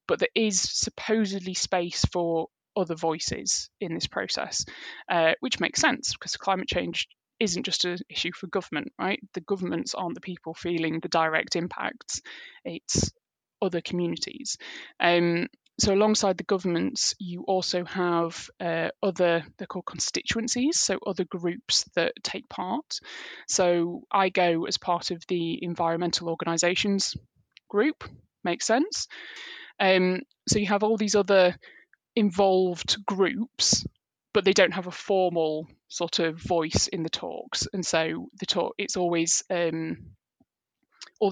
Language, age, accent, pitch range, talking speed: English, 20-39, British, 170-205 Hz, 140 wpm